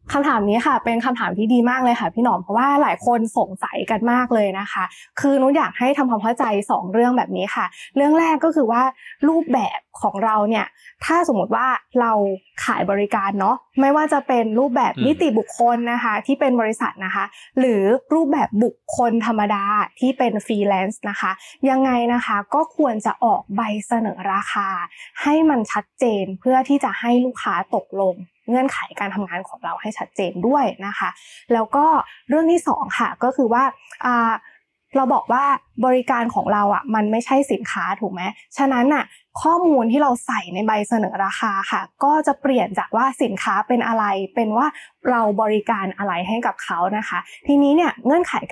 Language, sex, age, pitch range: Thai, female, 20-39, 210-270 Hz